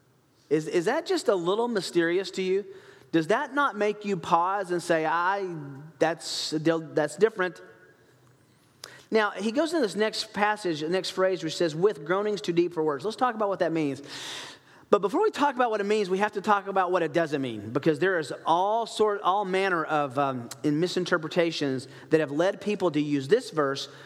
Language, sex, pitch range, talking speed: English, male, 155-200 Hz, 200 wpm